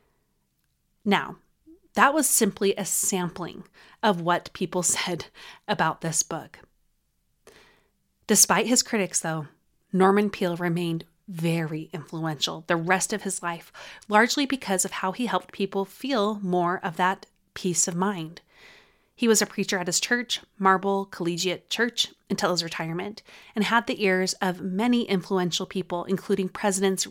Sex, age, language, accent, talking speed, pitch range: female, 30-49, English, American, 140 wpm, 175-210 Hz